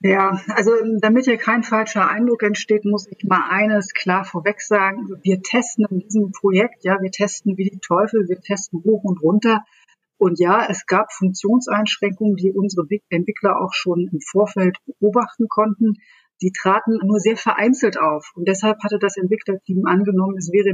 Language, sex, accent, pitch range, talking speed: German, female, German, 185-215 Hz, 170 wpm